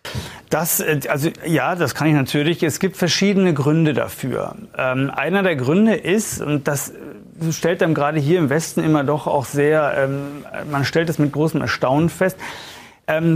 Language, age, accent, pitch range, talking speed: German, 40-59, German, 145-175 Hz, 170 wpm